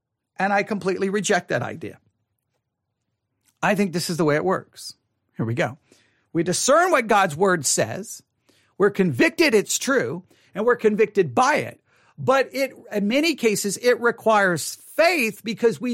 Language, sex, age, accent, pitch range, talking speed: English, male, 50-69, American, 195-245 Hz, 160 wpm